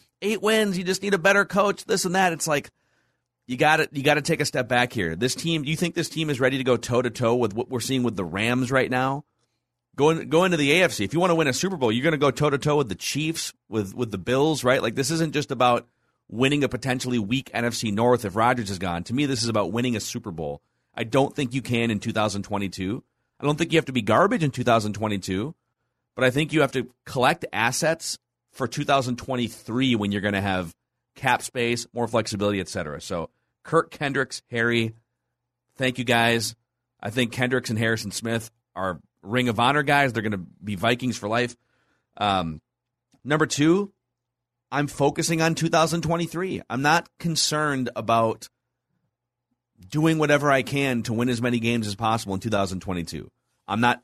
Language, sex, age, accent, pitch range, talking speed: English, male, 30-49, American, 115-145 Hz, 205 wpm